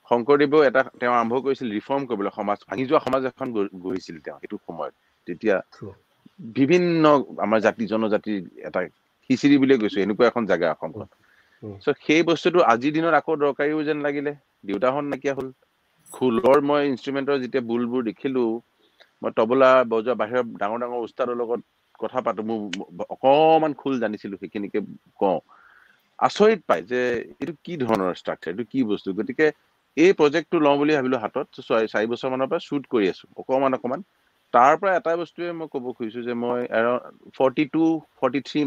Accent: Indian